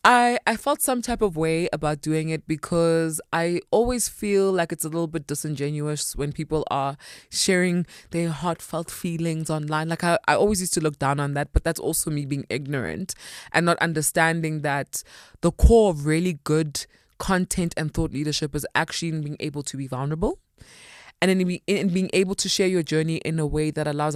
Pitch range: 155-195 Hz